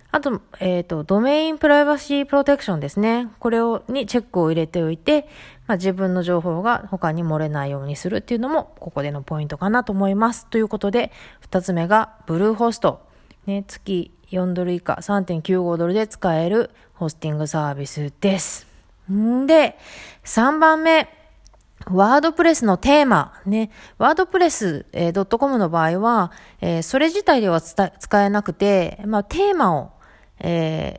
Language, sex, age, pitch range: Japanese, female, 20-39, 175-260 Hz